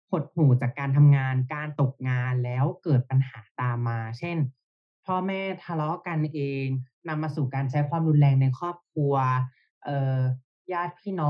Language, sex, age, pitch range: Thai, male, 20-39, 135-180 Hz